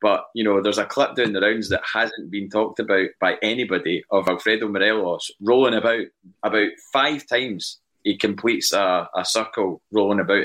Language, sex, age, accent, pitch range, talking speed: English, male, 20-39, British, 90-115 Hz, 180 wpm